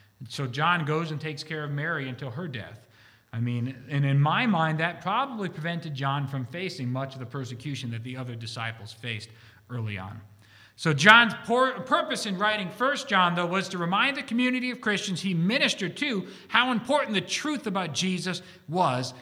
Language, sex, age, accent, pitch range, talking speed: English, male, 40-59, American, 140-225 Hz, 185 wpm